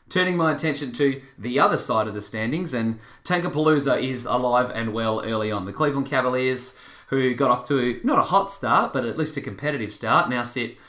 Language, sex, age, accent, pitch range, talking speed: English, male, 20-39, Australian, 115-145 Hz, 205 wpm